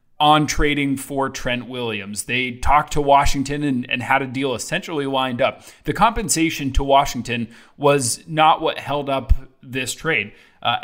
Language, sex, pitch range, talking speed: English, male, 125-155 Hz, 160 wpm